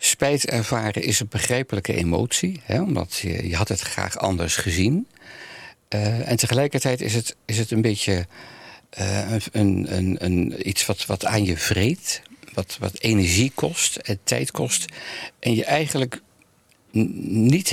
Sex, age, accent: male, 60-79, Dutch